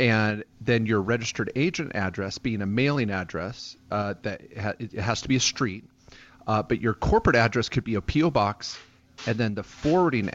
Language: English